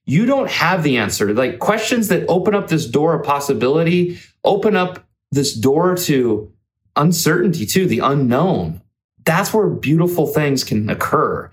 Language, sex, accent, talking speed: English, male, American, 150 wpm